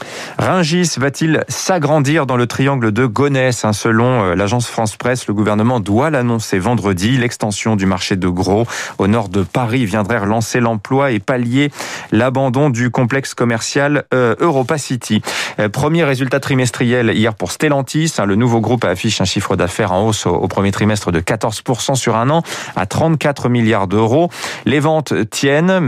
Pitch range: 105-140 Hz